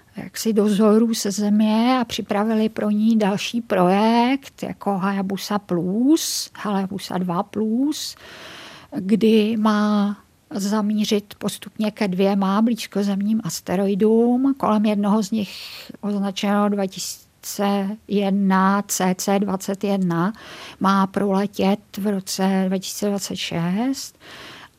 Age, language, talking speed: 50-69, Czech, 85 wpm